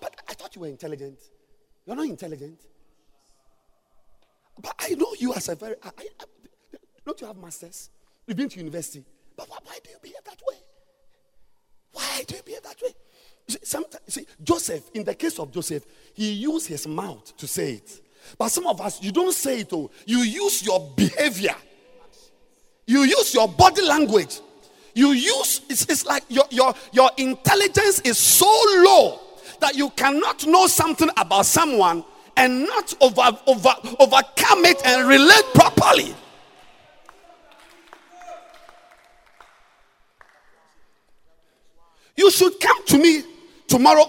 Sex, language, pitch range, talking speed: male, English, 215-350 Hz, 140 wpm